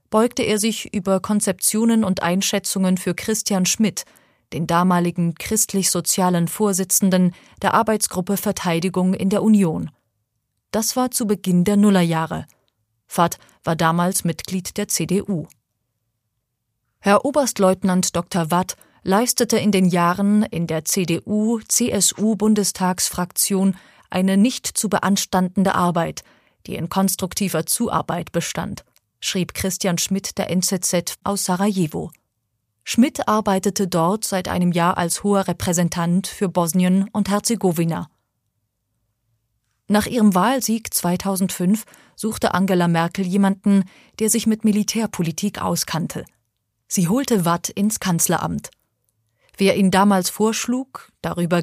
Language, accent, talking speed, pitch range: German, German, 110 wpm, 170-205 Hz